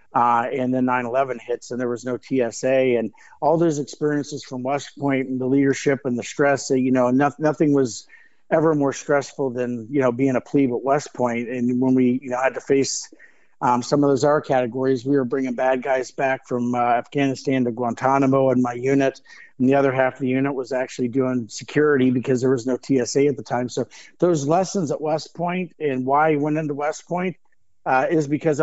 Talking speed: 210 wpm